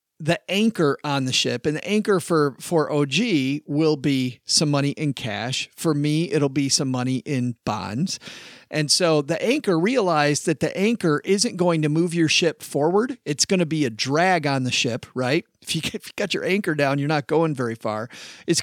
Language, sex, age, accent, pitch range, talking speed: English, male, 40-59, American, 135-170 Hz, 205 wpm